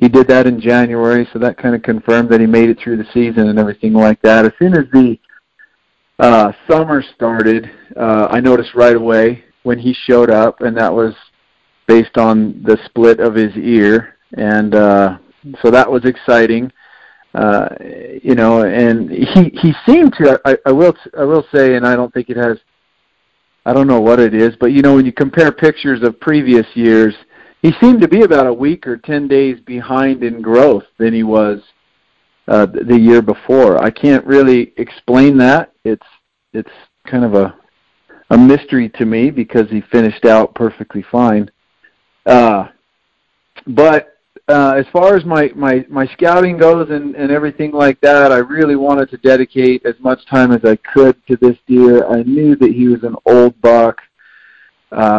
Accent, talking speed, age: American, 185 wpm, 50-69